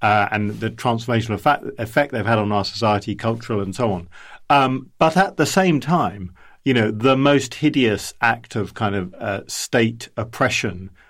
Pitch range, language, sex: 105-135 Hz, English, male